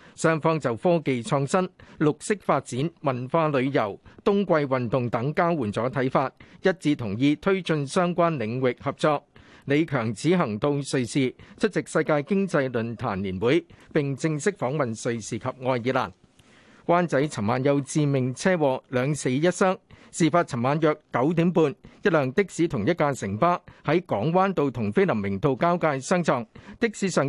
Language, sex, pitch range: Chinese, male, 130-175 Hz